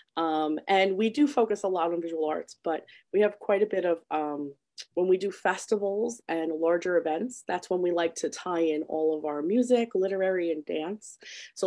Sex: female